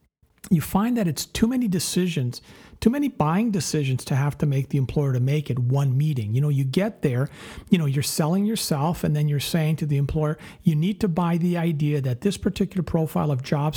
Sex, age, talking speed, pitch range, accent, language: male, 50-69, 220 wpm, 140-180 Hz, American, English